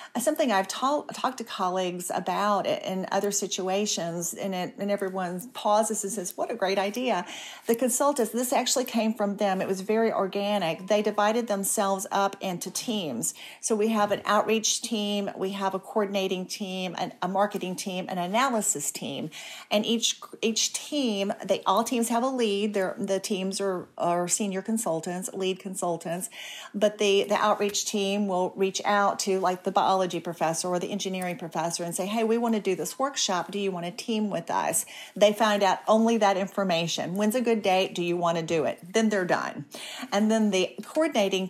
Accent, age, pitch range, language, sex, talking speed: American, 40-59, 185-215 Hz, English, female, 190 wpm